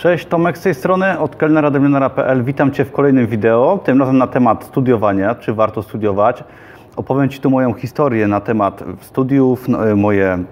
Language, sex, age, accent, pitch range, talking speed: Polish, male, 30-49, native, 110-135 Hz, 170 wpm